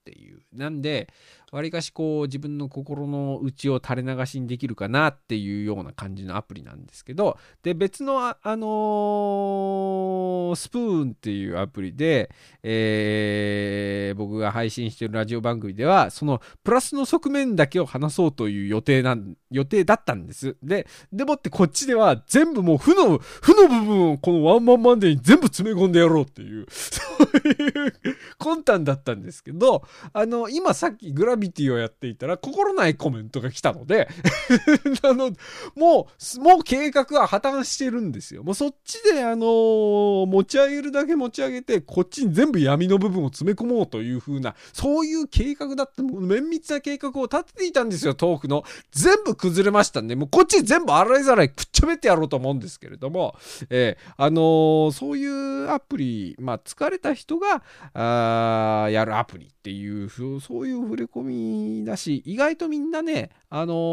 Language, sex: Japanese, male